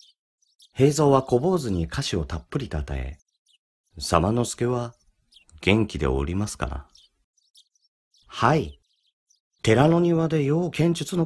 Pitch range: 75-120 Hz